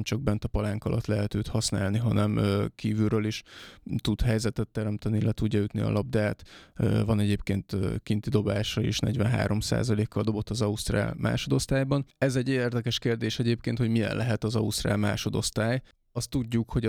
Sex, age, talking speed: male, 20-39, 150 wpm